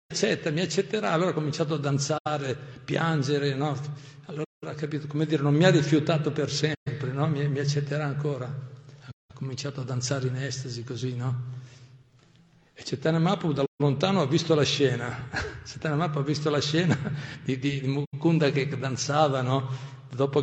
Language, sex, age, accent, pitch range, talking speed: Italian, male, 50-69, native, 130-150 Hz, 160 wpm